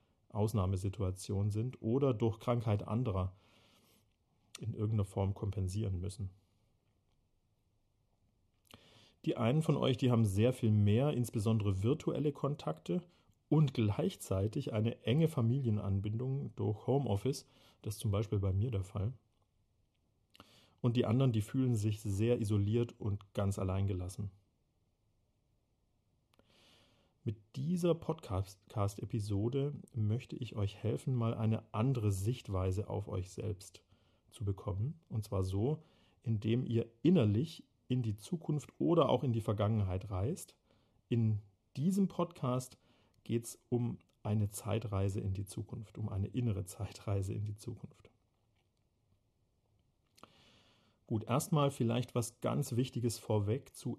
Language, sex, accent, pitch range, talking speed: English, male, German, 100-120 Hz, 120 wpm